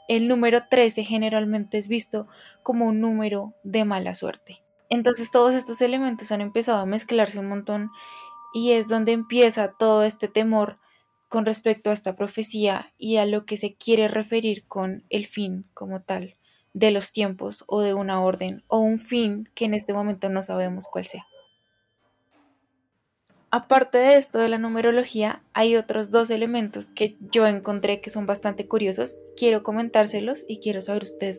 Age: 10-29